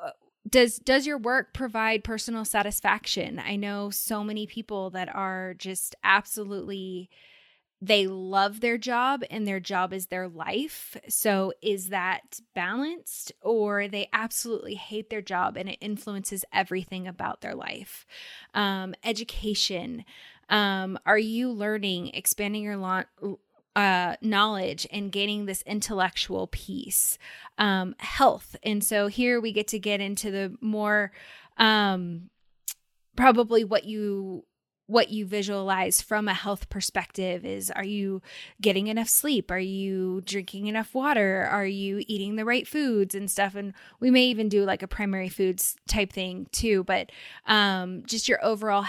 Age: 10-29